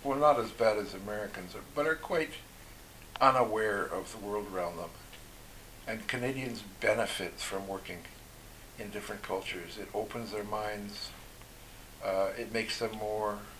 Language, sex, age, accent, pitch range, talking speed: English, male, 60-79, American, 105-140 Hz, 145 wpm